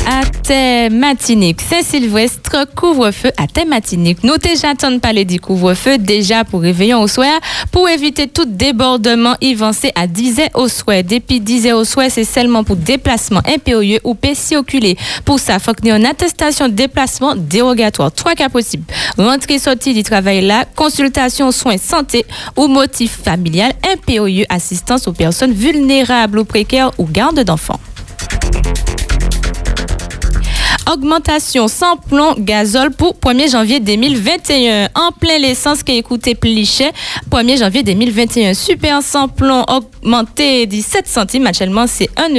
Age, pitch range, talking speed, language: 20-39, 215-280 Hz, 145 wpm, French